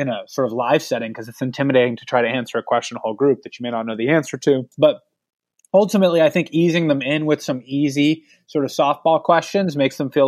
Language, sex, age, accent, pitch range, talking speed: English, male, 20-39, American, 130-160 Hz, 250 wpm